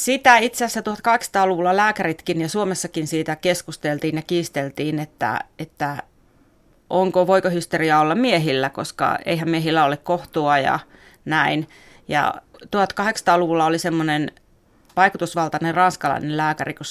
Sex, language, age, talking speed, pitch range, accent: female, Finnish, 30-49, 115 wpm, 150-175 Hz, native